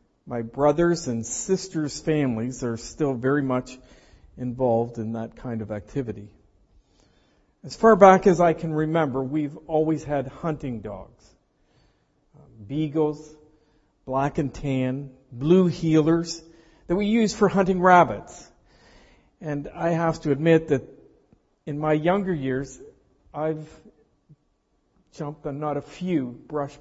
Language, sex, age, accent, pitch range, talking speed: English, male, 50-69, American, 120-165 Hz, 125 wpm